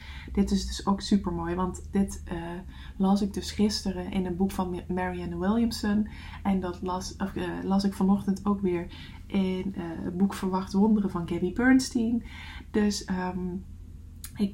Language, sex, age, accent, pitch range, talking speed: English, female, 20-39, Dutch, 180-205 Hz, 170 wpm